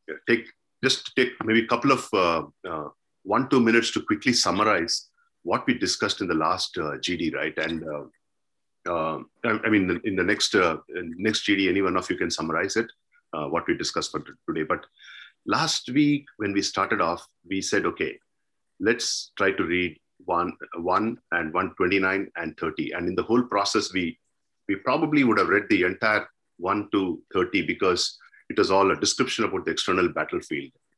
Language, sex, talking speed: English, male, 190 wpm